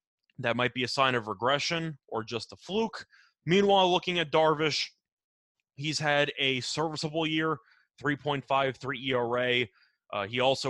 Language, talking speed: English, 140 wpm